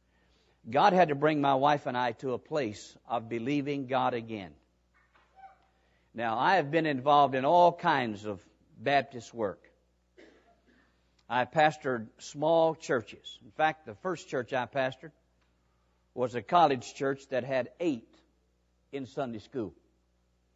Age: 50-69